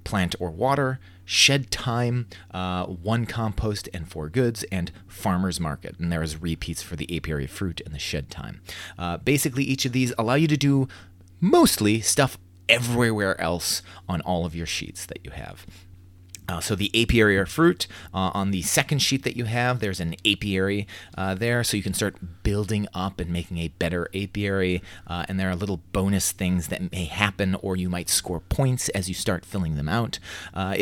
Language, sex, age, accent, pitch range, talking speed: English, male, 30-49, American, 90-110 Hz, 190 wpm